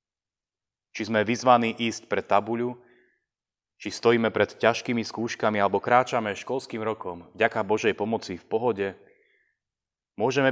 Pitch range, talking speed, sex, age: 95-120 Hz, 120 wpm, male, 30-49